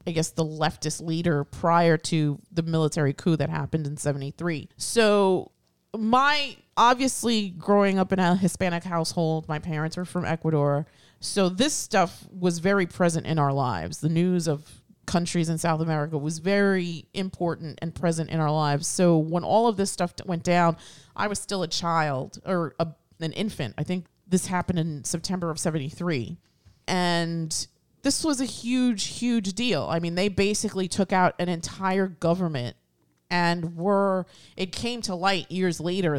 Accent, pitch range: American, 155-185 Hz